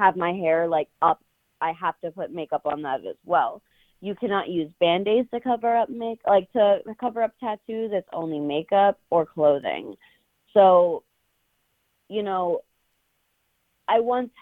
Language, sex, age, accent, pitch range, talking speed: English, female, 20-39, American, 165-205 Hz, 155 wpm